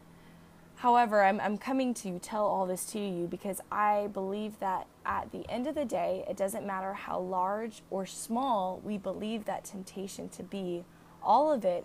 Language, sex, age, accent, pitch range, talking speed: English, female, 10-29, American, 190-235 Hz, 180 wpm